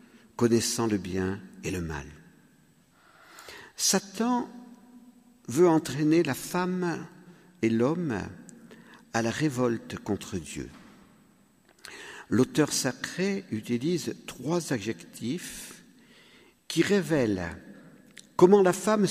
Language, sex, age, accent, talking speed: French, male, 50-69, French, 90 wpm